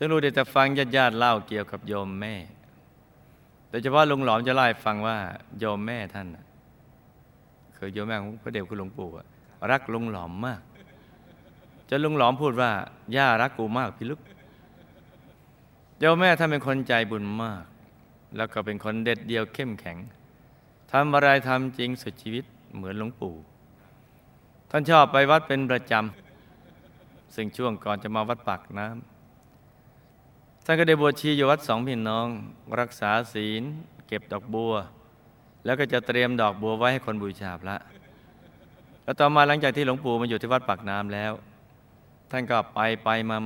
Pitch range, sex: 105-130 Hz, male